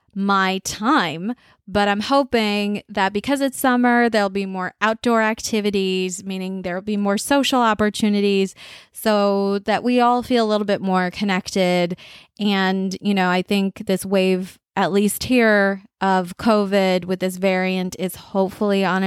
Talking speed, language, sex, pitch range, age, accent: 150 wpm, English, female, 185-215 Hz, 20-39, American